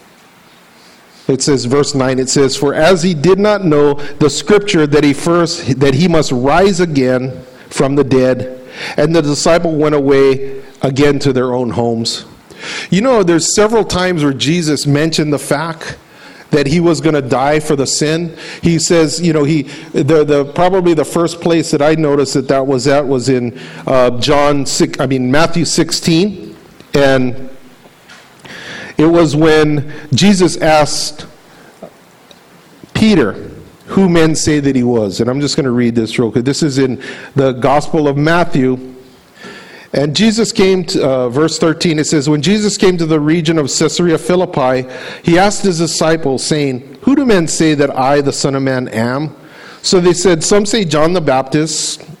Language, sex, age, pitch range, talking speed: English, male, 50-69, 135-165 Hz, 175 wpm